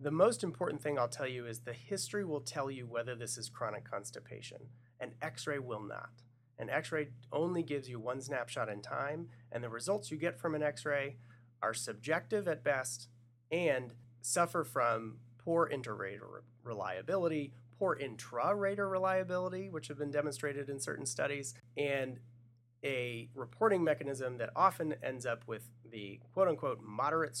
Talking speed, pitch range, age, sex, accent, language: 155 wpm, 120-150 Hz, 30-49, male, American, English